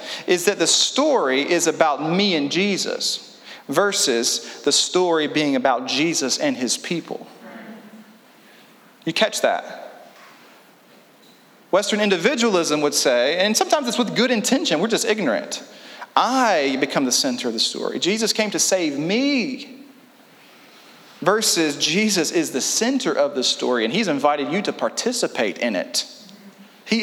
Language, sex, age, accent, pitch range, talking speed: English, male, 40-59, American, 165-240 Hz, 140 wpm